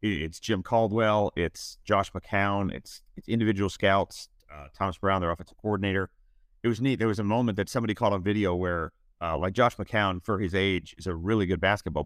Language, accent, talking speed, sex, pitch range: English, American, 205 wpm, male, 85-105 Hz